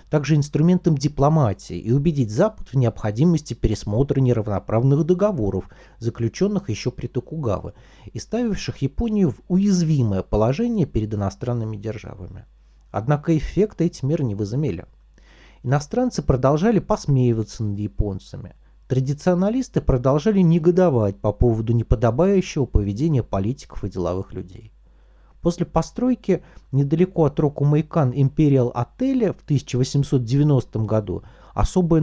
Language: Russian